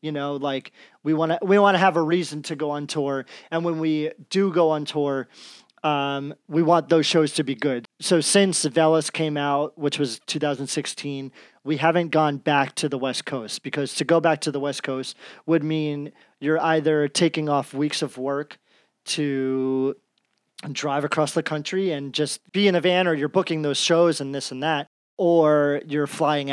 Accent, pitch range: American, 140-165 Hz